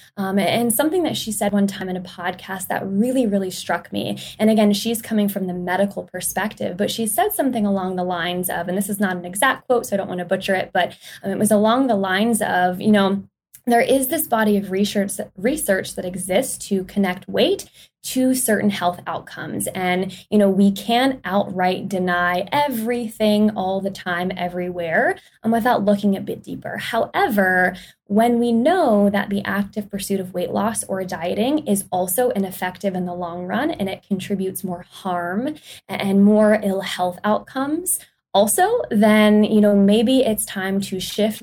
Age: 20-39